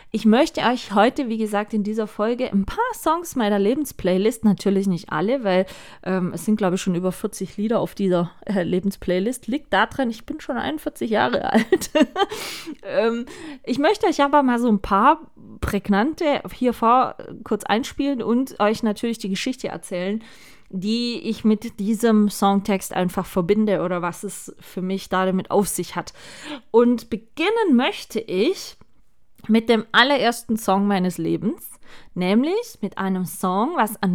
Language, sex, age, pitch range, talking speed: German, female, 20-39, 195-260 Hz, 160 wpm